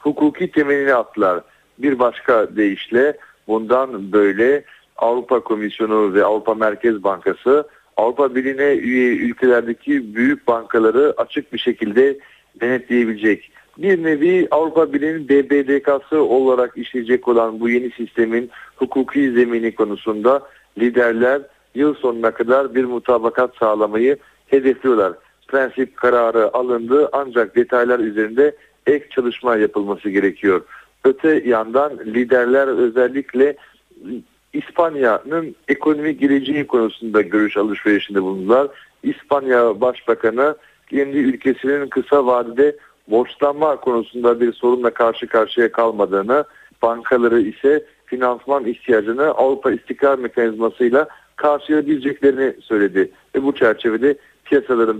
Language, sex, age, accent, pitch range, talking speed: Turkish, male, 60-79, native, 115-140 Hz, 100 wpm